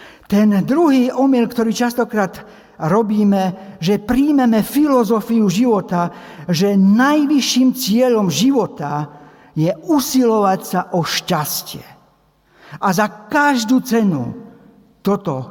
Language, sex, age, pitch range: Slovak, male, 60-79, 180-240 Hz